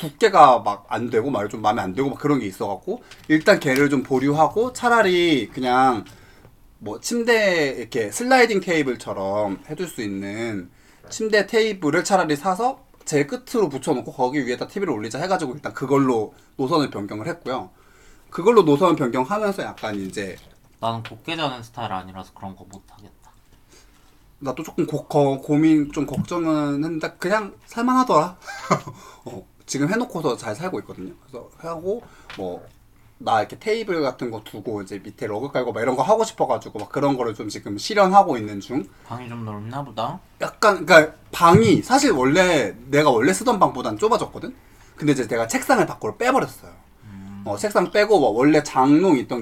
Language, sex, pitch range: Korean, male, 110-180 Hz